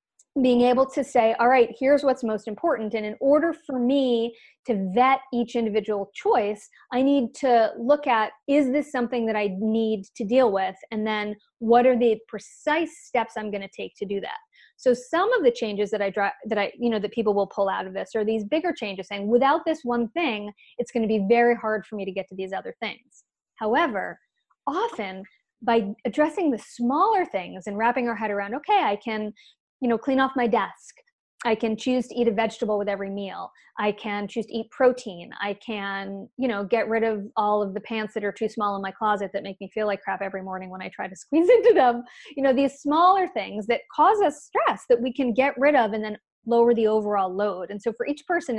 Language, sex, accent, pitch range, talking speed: English, female, American, 210-260 Hz, 230 wpm